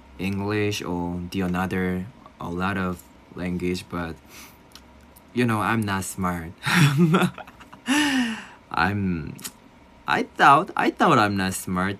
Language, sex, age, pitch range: Korean, male, 20-39, 90-115 Hz